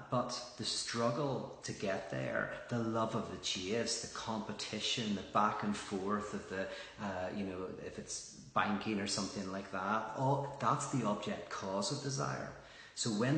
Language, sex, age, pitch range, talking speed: English, male, 30-49, 90-120 Hz, 170 wpm